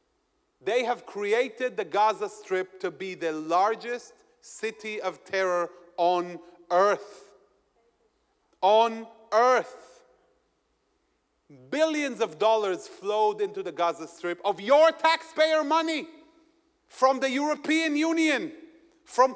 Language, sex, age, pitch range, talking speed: English, male, 40-59, 210-330 Hz, 105 wpm